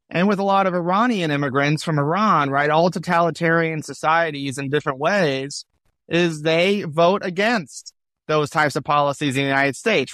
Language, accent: English, American